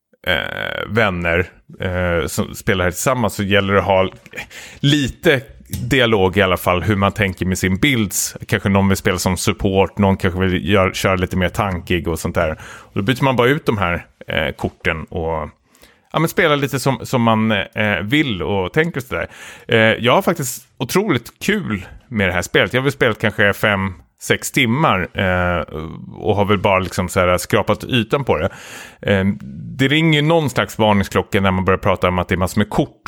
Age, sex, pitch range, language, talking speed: 30-49, male, 90-120 Hz, Swedish, 195 wpm